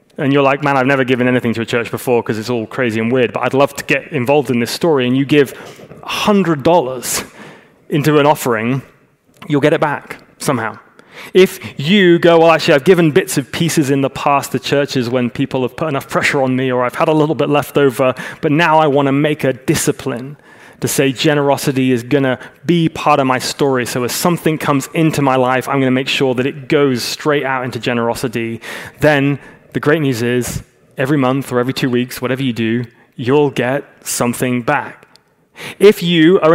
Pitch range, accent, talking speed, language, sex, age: 125-150 Hz, British, 210 wpm, English, male, 20-39